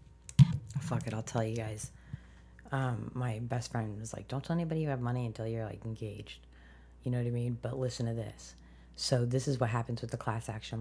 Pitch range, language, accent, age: 115-135 Hz, English, American, 30-49